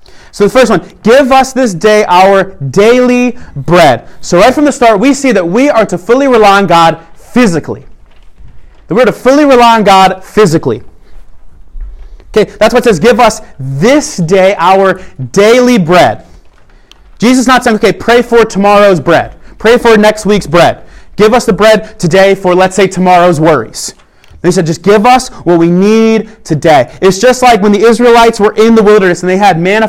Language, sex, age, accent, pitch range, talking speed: English, male, 30-49, American, 180-230 Hz, 190 wpm